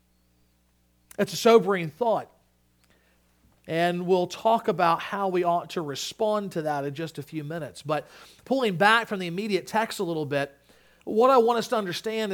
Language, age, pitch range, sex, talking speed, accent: English, 40-59, 155-215 Hz, male, 175 wpm, American